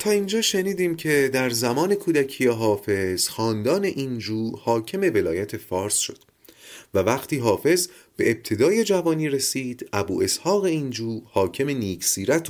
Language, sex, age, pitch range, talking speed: Persian, male, 30-49, 105-175 Hz, 125 wpm